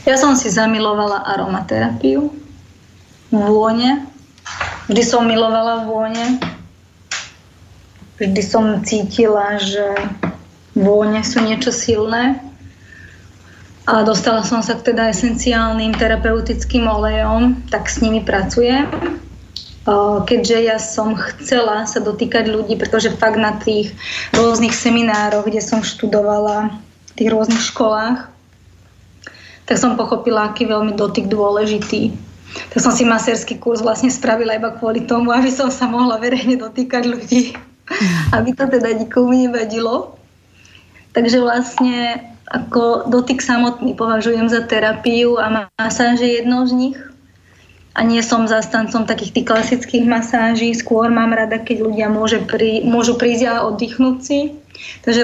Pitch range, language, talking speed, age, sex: 215-240 Hz, Slovak, 125 wpm, 20-39, female